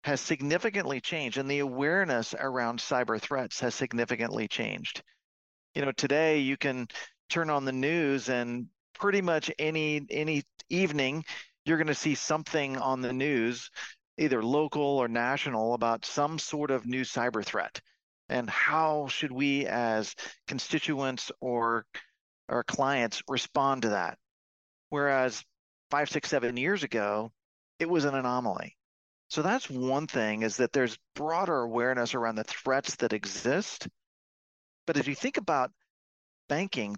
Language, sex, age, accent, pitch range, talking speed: English, male, 40-59, American, 120-150 Hz, 140 wpm